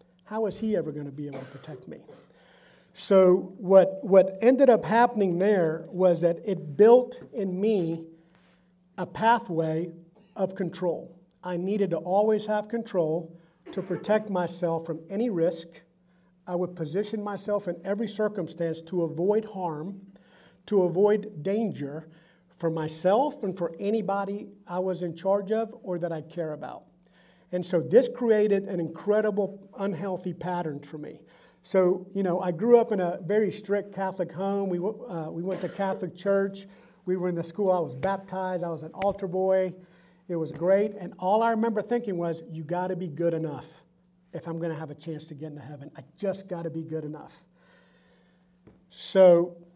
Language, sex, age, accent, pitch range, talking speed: English, male, 50-69, American, 170-200 Hz, 175 wpm